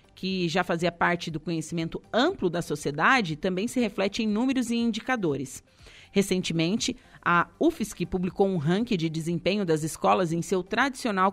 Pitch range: 170-210 Hz